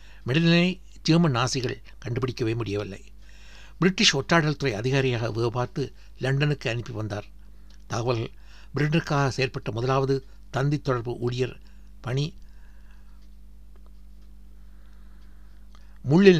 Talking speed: 80 wpm